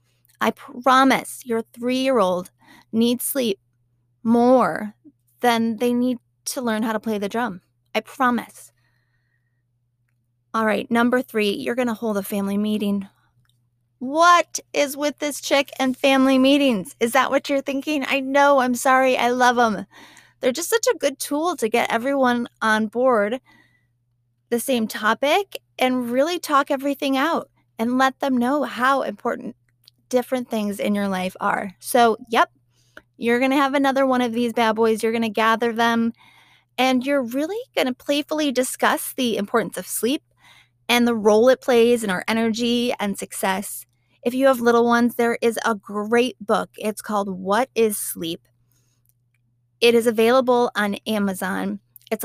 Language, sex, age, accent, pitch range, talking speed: English, female, 30-49, American, 200-260 Hz, 160 wpm